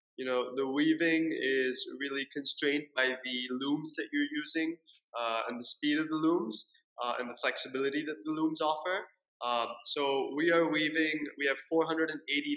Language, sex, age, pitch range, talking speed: English, male, 20-39, 120-145 Hz, 170 wpm